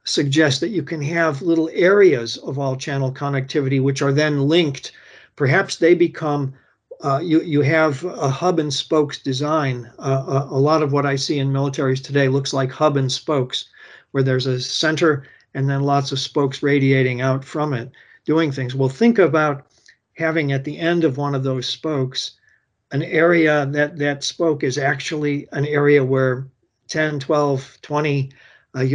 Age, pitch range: 50-69, 135-155 Hz